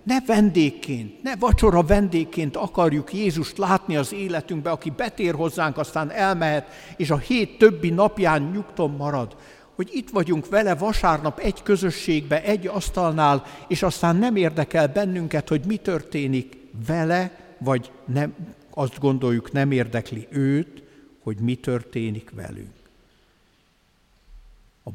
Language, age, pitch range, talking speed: Hungarian, 60-79, 120-170 Hz, 125 wpm